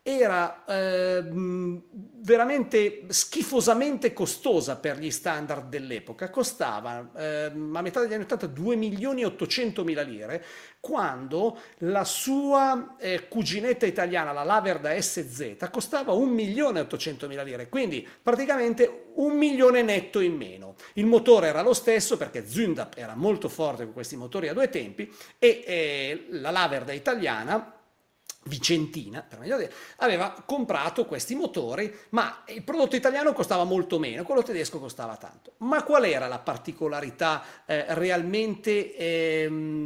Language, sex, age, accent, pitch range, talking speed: Italian, male, 50-69, native, 150-235 Hz, 130 wpm